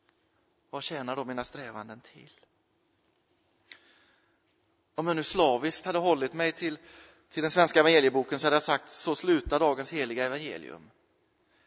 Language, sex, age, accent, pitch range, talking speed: Swedish, male, 30-49, native, 130-185 Hz, 140 wpm